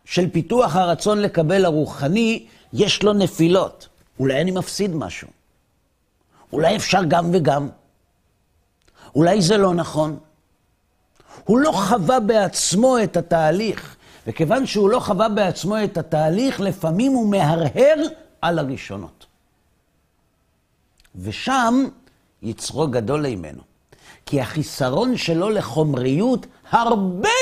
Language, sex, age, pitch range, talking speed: Hebrew, male, 50-69, 150-230 Hz, 105 wpm